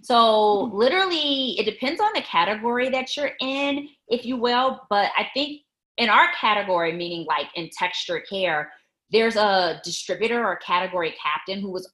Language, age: English, 30-49